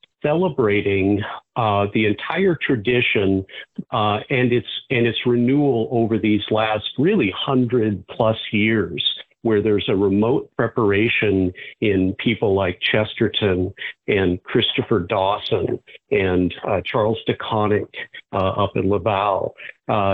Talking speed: 125 wpm